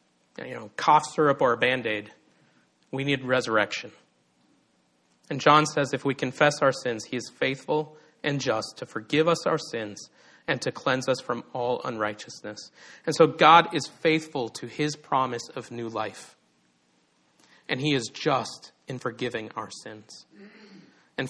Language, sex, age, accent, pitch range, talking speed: English, male, 40-59, American, 110-155 Hz, 155 wpm